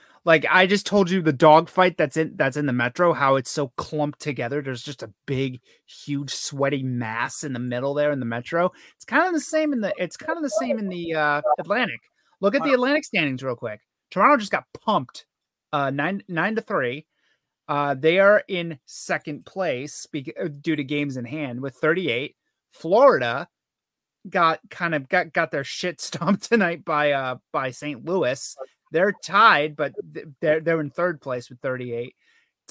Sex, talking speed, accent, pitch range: male, 190 wpm, American, 145-210 Hz